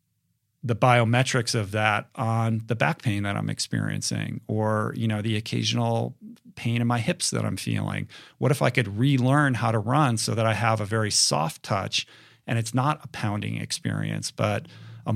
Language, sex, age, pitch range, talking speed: English, male, 40-59, 105-130 Hz, 185 wpm